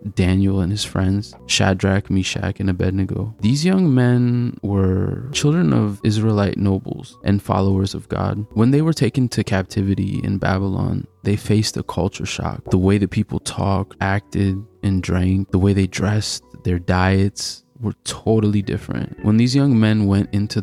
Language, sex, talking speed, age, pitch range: English, male, 165 wpm, 20-39, 100-115 Hz